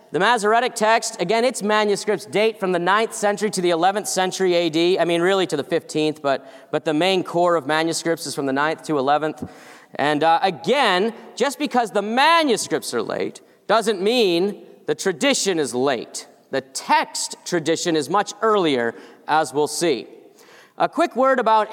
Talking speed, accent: 175 wpm, American